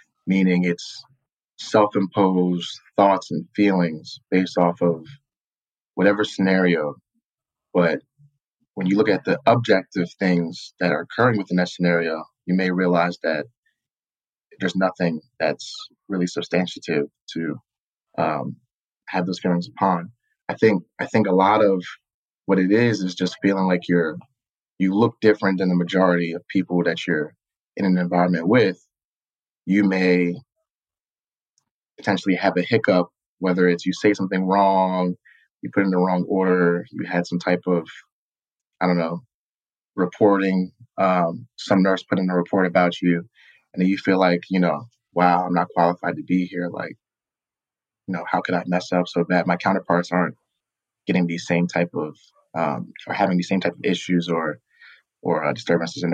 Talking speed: 160 wpm